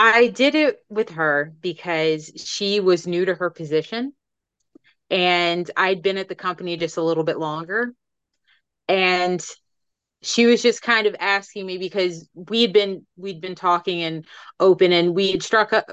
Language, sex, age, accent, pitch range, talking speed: English, female, 30-49, American, 175-215 Hz, 165 wpm